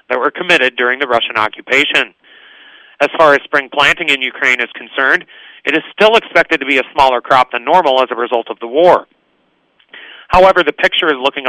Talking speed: 200 wpm